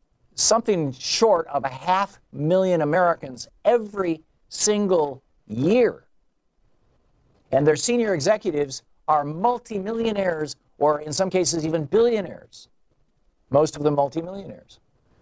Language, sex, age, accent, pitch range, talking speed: English, male, 50-69, American, 130-190 Hz, 105 wpm